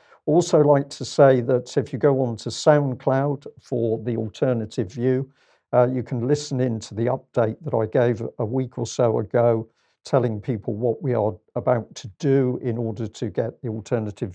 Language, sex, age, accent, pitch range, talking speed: English, male, 50-69, British, 115-140 Hz, 190 wpm